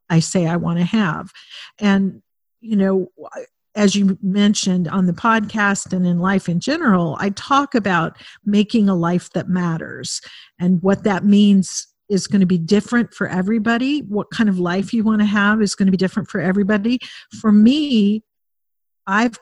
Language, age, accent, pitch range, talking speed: English, 50-69, American, 185-215 Hz, 175 wpm